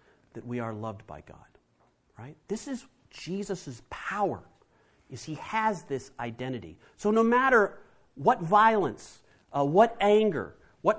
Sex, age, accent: male, 40-59, American